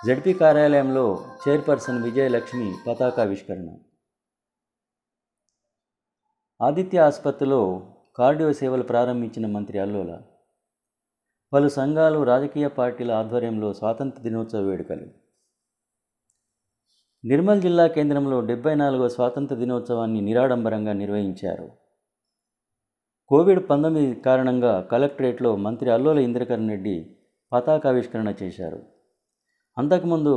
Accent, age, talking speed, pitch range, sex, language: native, 30-49, 80 wpm, 110-145 Hz, male, Telugu